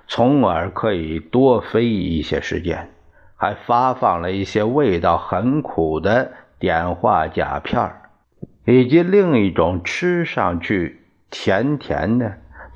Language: Chinese